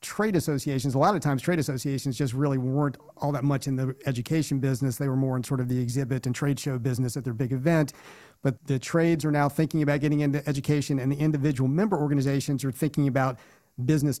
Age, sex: 50-69, male